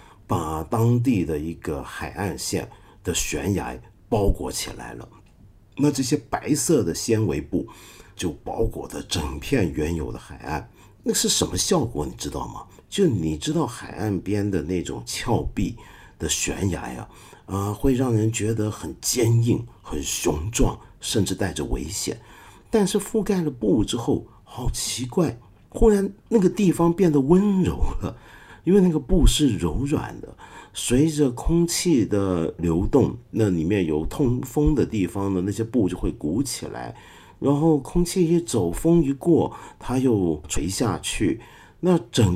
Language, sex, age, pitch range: Chinese, male, 50-69, 95-150 Hz